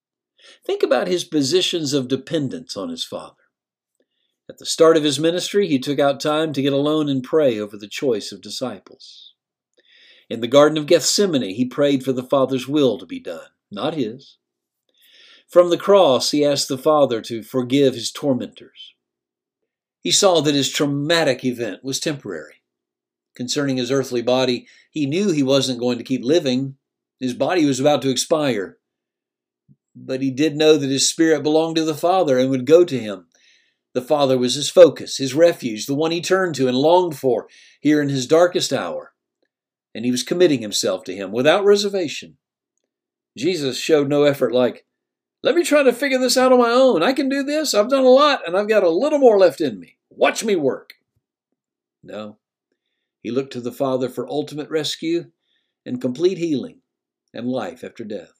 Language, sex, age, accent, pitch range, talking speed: English, male, 50-69, American, 130-185 Hz, 185 wpm